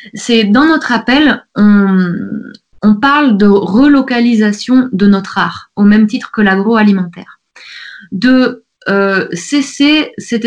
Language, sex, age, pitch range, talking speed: French, female, 20-39, 200-245 Hz, 120 wpm